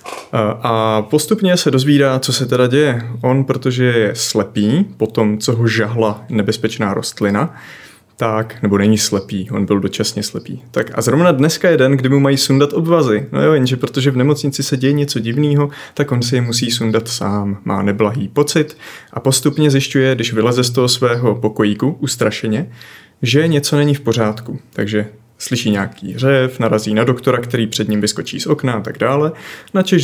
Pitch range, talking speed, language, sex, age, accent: 110-140 Hz, 180 wpm, Czech, male, 30-49, native